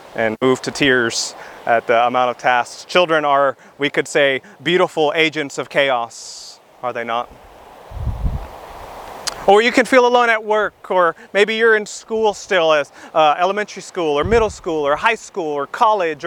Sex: male